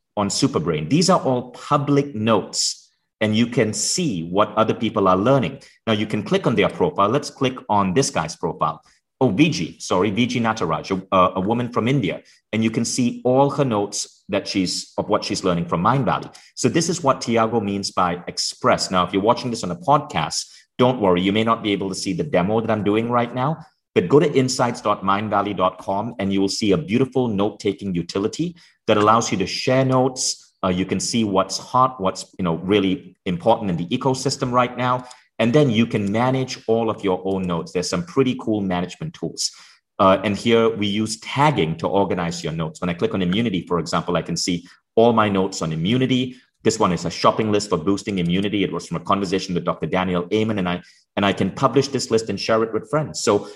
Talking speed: 215 wpm